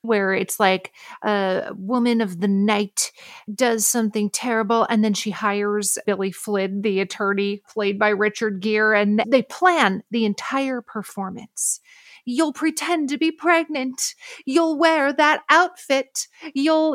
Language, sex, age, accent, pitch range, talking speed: English, female, 40-59, American, 205-275 Hz, 140 wpm